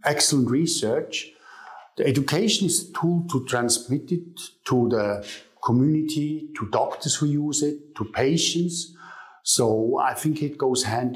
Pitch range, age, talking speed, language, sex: 125-165 Hz, 50-69, 140 wpm, English, male